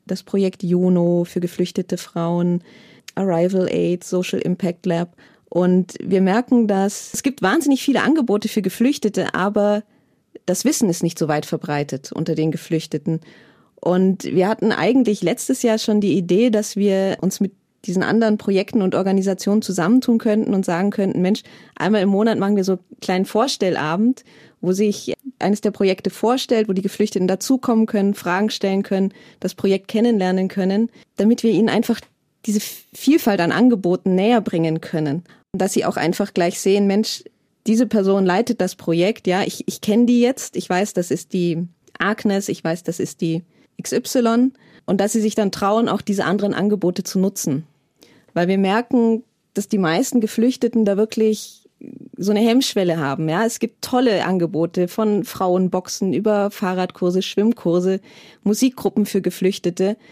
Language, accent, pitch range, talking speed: German, German, 185-225 Hz, 165 wpm